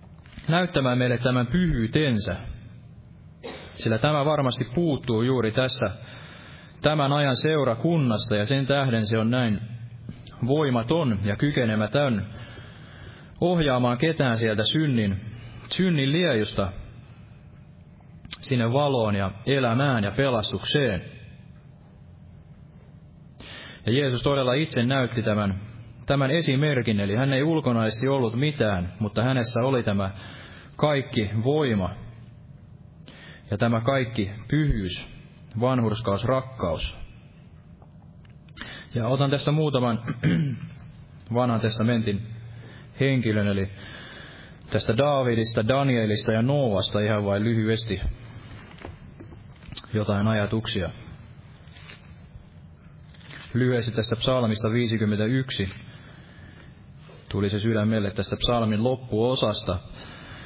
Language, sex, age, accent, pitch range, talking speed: Finnish, male, 30-49, native, 110-135 Hz, 90 wpm